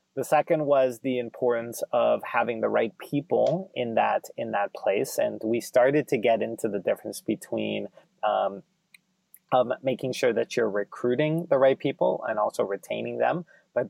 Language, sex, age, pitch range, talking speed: English, male, 30-49, 115-165 Hz, 170 wpm